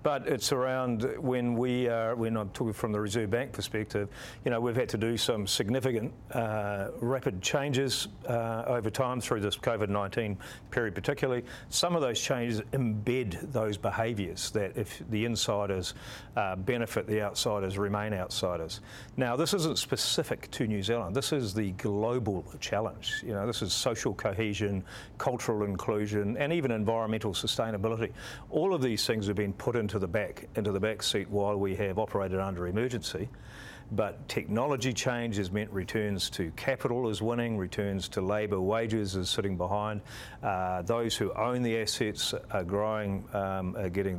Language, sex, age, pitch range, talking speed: English, male, 50-69, 100-120 Hz, 165 wpm